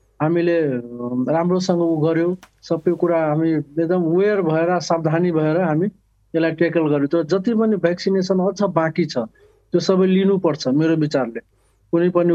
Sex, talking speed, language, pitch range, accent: male, 130 wpm, English, 155-175 Hz, Indian